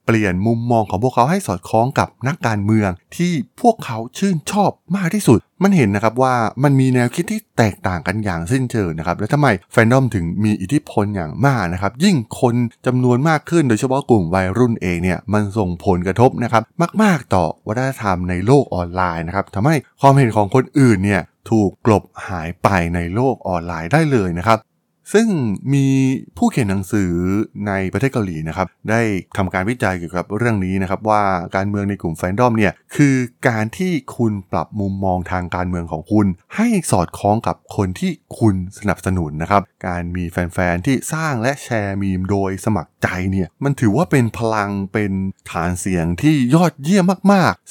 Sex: male